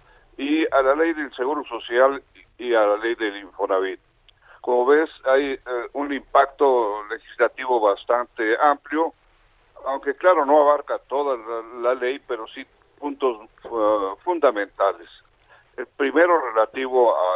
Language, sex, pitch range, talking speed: Spanish, male, 120-155 Hz, 135 wpm